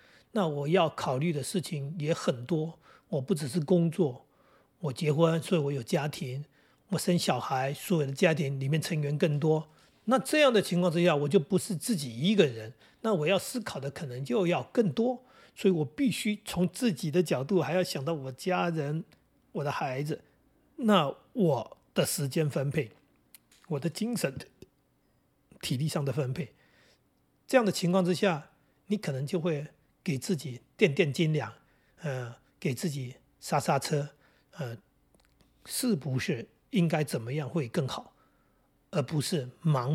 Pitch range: 140-185 Hz